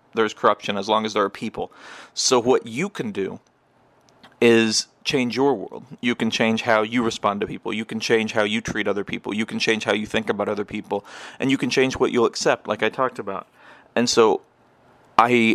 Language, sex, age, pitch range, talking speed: English, male, 30-49, 105-115 Hz, 215 wpm